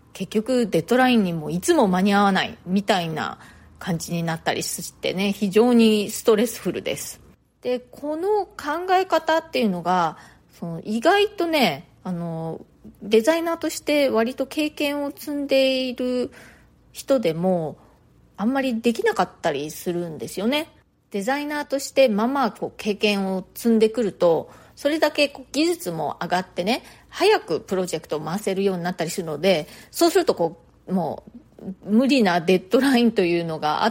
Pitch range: 185-275 Hz